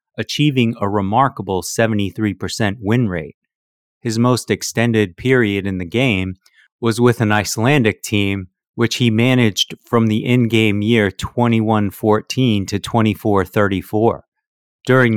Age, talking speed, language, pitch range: 30-49, 120 wpm, English, 100-120 Hz